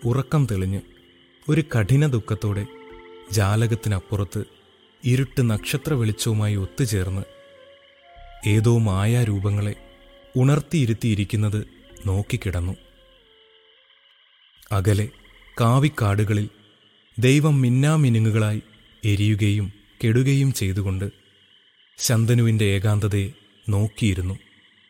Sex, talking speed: male, 60 wpm